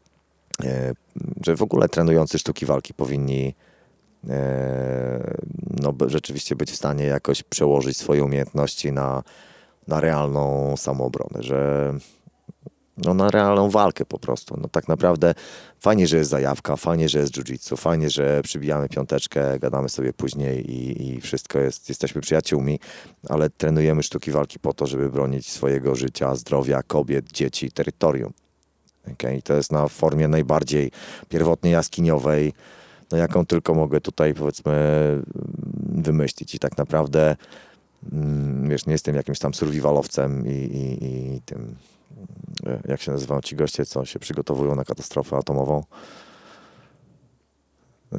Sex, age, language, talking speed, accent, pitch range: male, 30-49, Polish, 130 wpm, native, 65-75 Hz